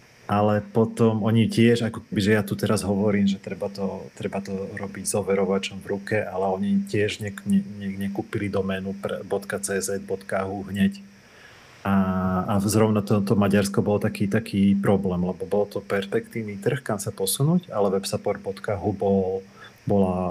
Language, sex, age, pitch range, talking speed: Slovak, male, 40-59, 95-110 Hz, 155 wpm